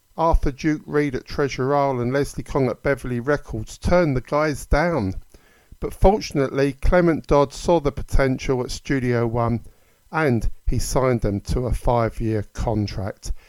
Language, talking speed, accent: English, 145 wpm, British